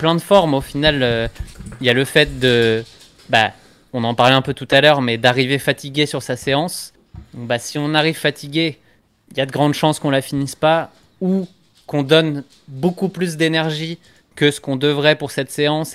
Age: 20-39